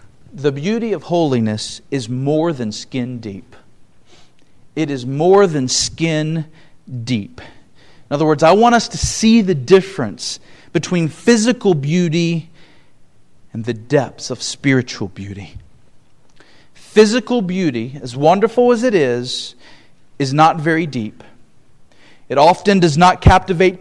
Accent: American